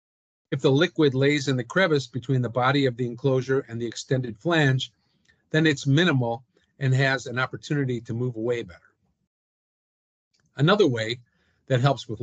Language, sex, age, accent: English, male, 50-69, American